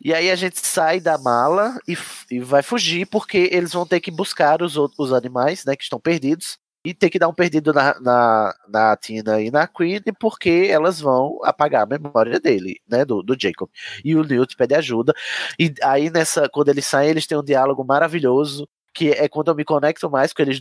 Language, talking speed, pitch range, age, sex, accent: Portuguese, 215 wpm, 125-160 Hz, 20-39, male, Brazilian